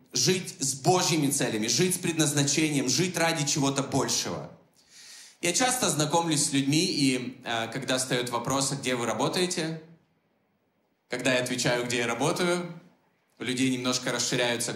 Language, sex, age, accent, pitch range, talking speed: Russian, male, 20-39, native, 140-185 Hz, 140 wpm